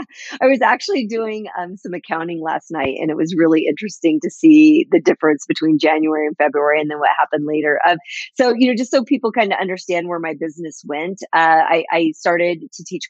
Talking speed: 215 wpm